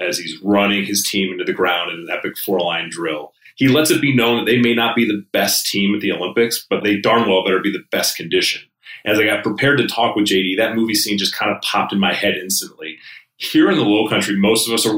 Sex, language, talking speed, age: male, English, 265 wpm, 30-49